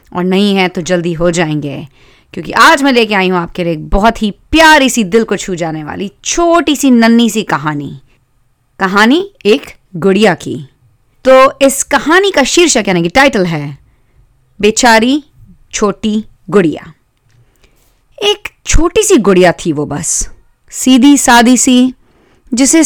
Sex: female